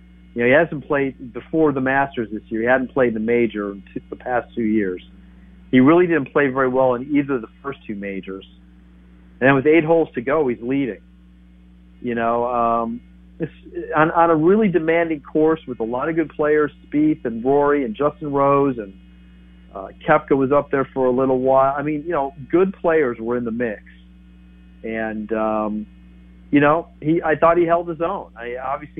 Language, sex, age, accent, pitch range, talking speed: English, male, 50-69, American, 105-150 Hz, 205 wpm